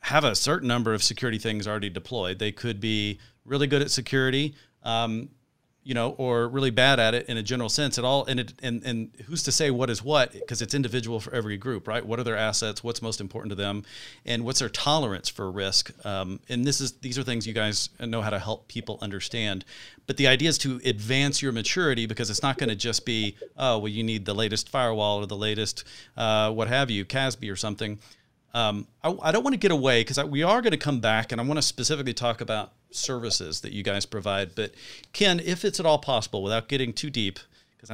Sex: male